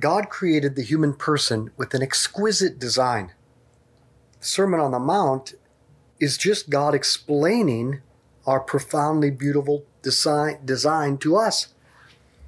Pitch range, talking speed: 130-185 Hz, 115 wpm